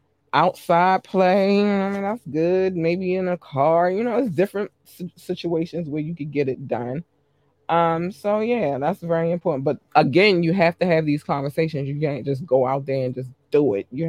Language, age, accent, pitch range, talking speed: English, 20-39, American, 140-175 Hz, 205 wpm